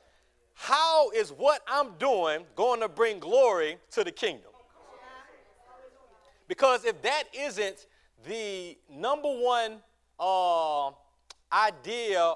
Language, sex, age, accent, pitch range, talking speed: English, male, 40-59, American, 180-270 Hz, 100 wpm